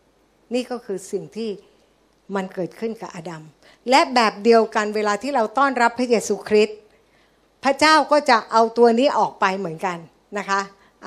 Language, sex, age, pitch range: Thai, female, 60-79, 185-235 Hz